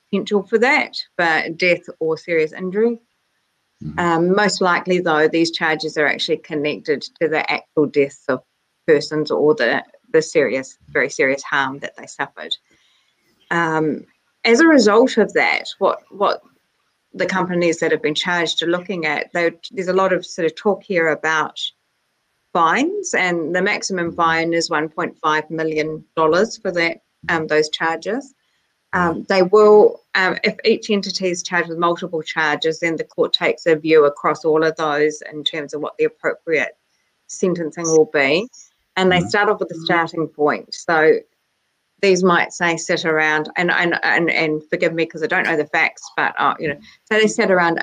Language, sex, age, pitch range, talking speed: English, female, 30-49, 155-205 Hz, 170 wpm